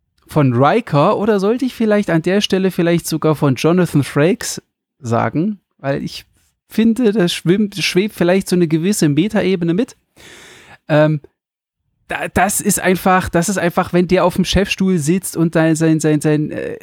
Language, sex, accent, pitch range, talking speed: German, male, German, 155-190 Hz, 165 wpm